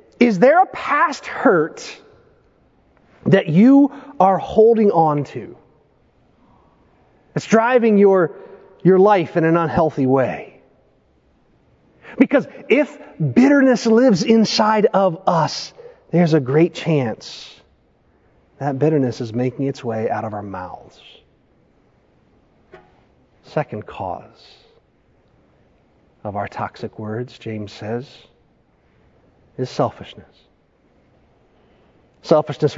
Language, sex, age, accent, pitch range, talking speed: English, male, 40-59, American, 130-185 Hz, 95 wpm